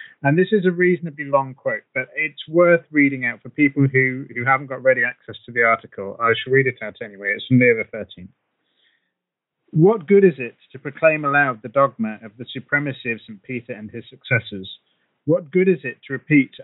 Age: 30-49